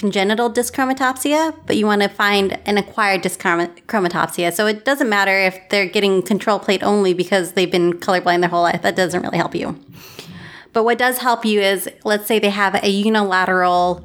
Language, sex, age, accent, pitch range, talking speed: English, female, 20-39, American, 180-215 Hz, 190 wpm